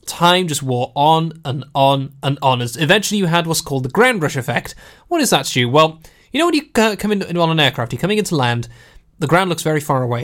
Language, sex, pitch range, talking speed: English, male, 135-185 Hz, 245 wpm